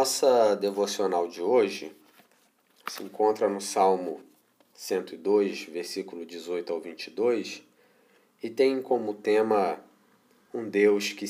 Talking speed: 105 wpm